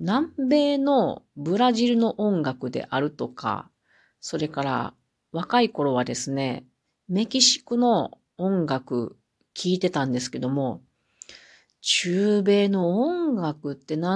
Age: 40-59